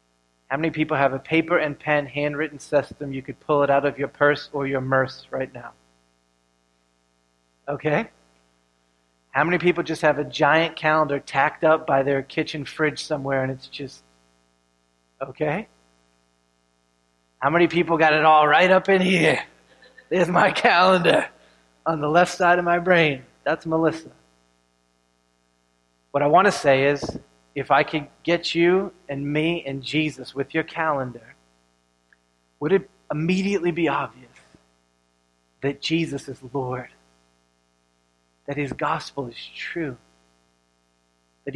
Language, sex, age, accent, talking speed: English, male, 30-49, American, 140 wpm